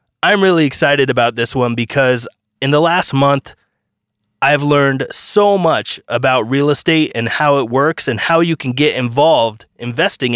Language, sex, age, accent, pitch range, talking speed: English, male, 20-39, American, 120-165 Hz, 170 wpm